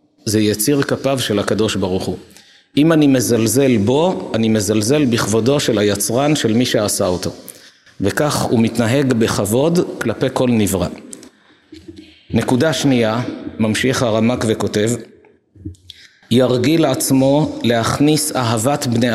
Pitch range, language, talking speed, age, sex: 110-140 Hz, Hebrew, 115 wpm, 50-69, male